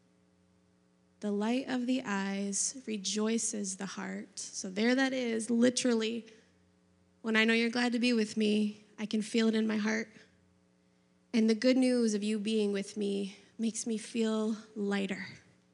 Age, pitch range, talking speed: 20-39, 195-245 Hz, 160 wpm